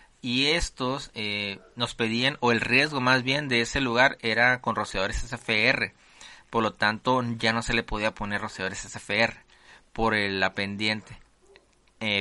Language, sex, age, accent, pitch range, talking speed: Spanish, male, 30-49, Mexican, 105-130 Hz, 155 wpm